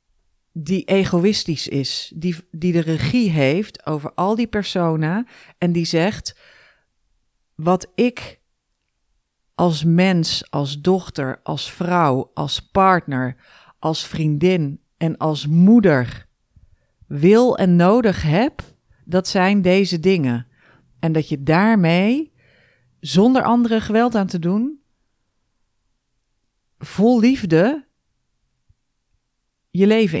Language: Dutch